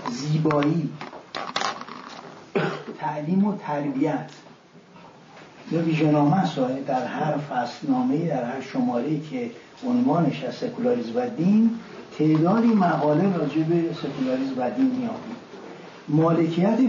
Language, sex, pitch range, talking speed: Persian, male, 150-205 Hz, 105 wpm